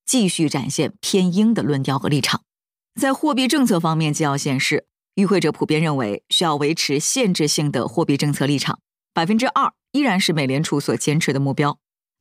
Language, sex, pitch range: Chinese, female, 155-230 Hz